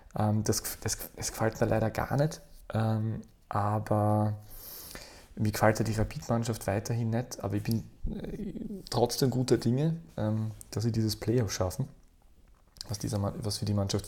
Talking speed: 160 wpm